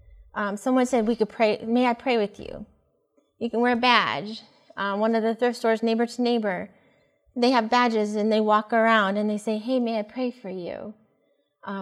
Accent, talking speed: American, 215 wpm